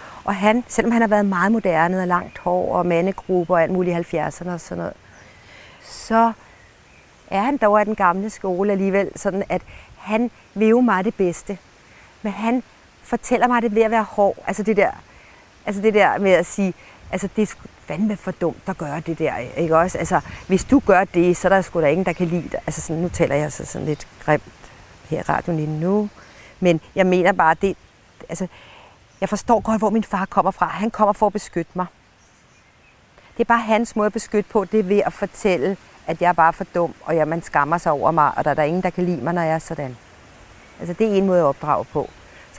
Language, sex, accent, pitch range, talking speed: Danish, female, native, 170-210 Hz, 235 wpm